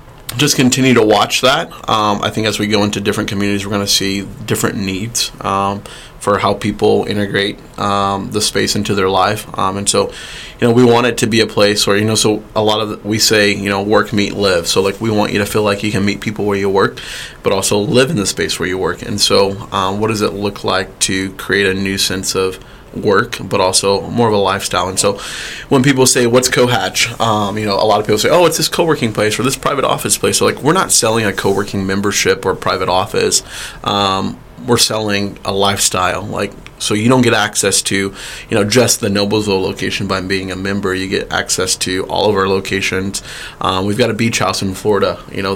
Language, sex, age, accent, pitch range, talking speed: English, male, 20-39, American, 95-110 Hz, 235 wpm